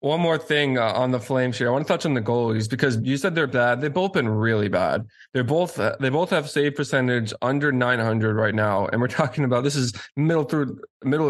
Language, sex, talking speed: English, male, 250 wpm